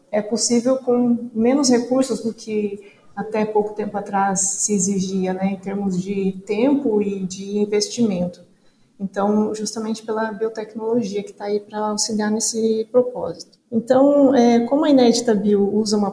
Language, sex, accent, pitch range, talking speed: Portuguese, female, Brazilian, 200-235 Hz, 150 wpm